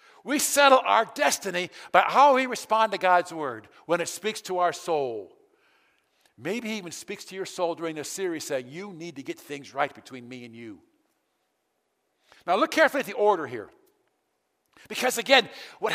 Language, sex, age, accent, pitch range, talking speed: English, male, 50-69, American, 200-325 Hz, 180 wpm